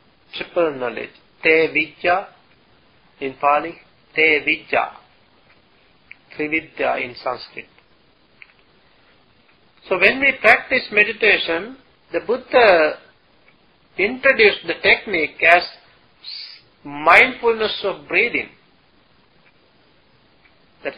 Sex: male